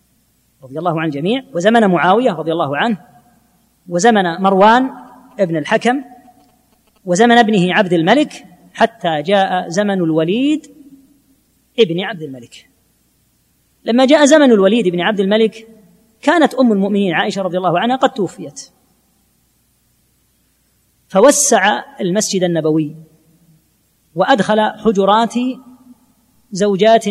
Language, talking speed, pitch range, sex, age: Arabic, 100 wpm, 180-250 Hz, female, 30-49